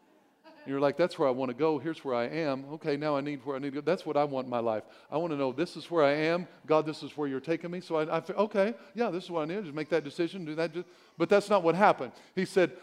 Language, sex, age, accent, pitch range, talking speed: English, male, 50-69, American, 135-180 Hz, 315 wpm